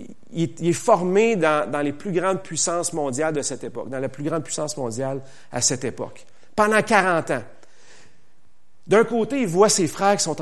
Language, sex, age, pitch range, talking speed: French, male, 40-59, 150-205 Hz, 190 wpm